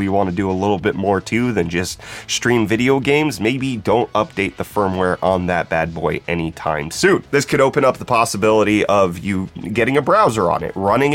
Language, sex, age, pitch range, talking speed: English, male, 30-49, 90-115 Hz, 210 wpm